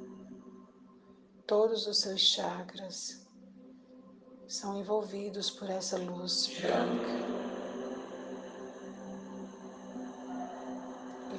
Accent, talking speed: Brazilian, 60 wpm